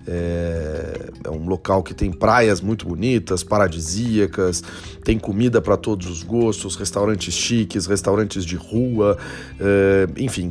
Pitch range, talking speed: 100-130 Hz, 125 wpm